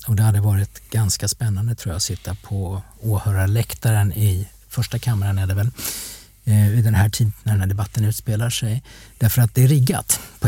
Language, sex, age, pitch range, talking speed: English, male, 50-69, 100-120 Hz, 195 wpm